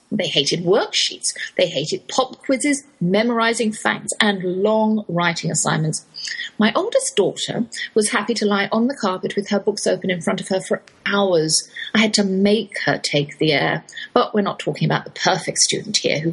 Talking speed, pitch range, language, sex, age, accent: 185 wpm, 170-245 Hz, English, female, 40-59, British